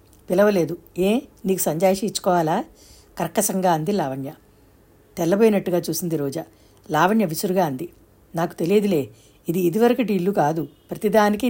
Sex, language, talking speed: female, Telugu, 110 wpm